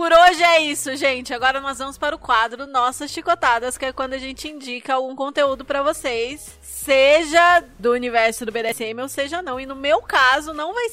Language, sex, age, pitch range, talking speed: Portuguese, female, 20-39, 245-295 Hz, 205 wpm